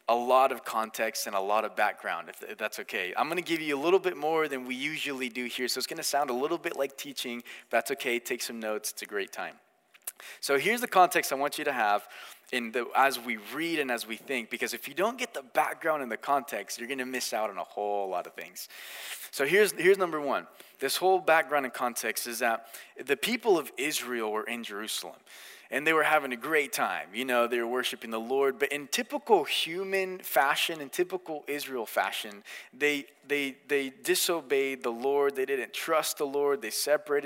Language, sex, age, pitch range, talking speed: English, male, 20-39, 125-160 Hz, 225 wpm